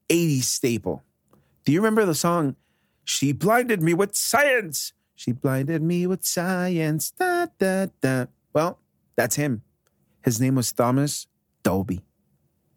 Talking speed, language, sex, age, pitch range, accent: 130 wpm, English, male, 30-49, 115-150 Hz, American